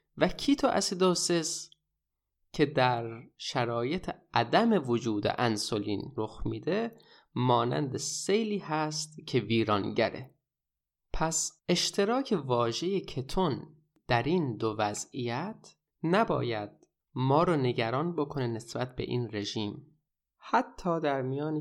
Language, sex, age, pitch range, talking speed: Persian, male, 20-39, 125-175 Hz, 95 wpm